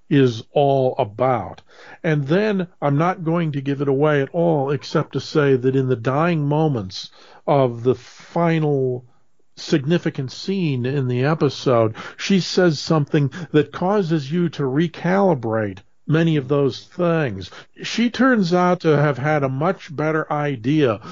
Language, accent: English, American